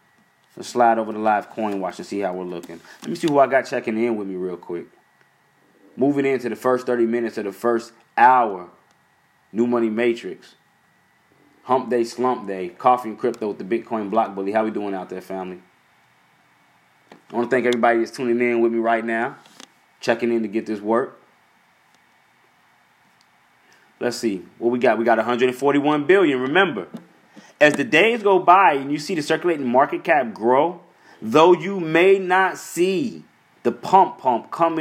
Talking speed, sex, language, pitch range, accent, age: 180 wpm, male, English, 115-140 Hz, American, 20-39